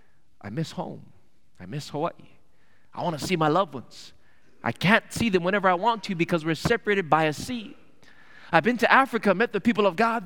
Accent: American